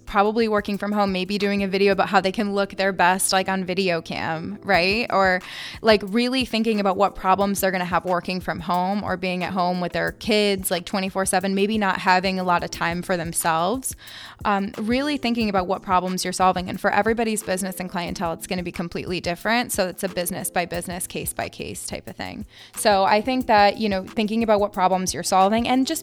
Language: English